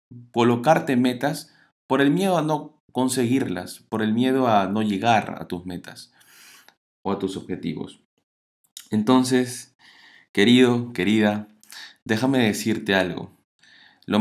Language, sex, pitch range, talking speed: Spanish, male, 95-120 Hz, 120 wpm